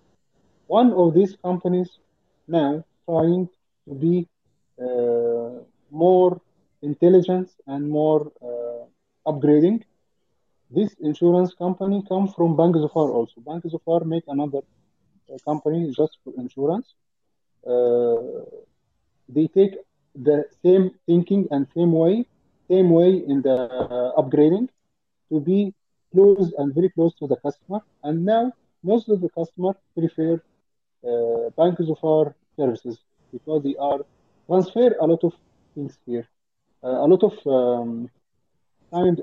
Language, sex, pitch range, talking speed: Persian, male, 140-190 Hz, 125 wpm